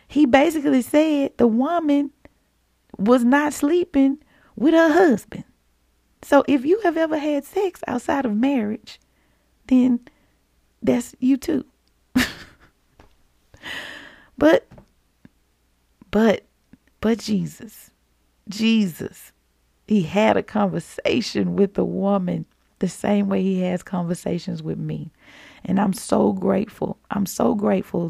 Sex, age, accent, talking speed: female, 30-49, American, 110 wpm